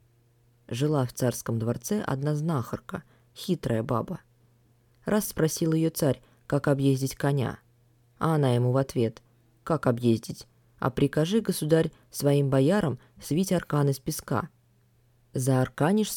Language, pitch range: Russian, 120-150 Hz